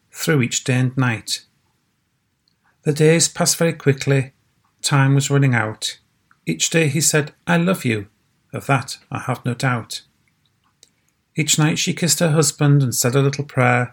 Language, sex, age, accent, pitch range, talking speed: English, male, 40-59, British, 125-150 Hz, 165 wpm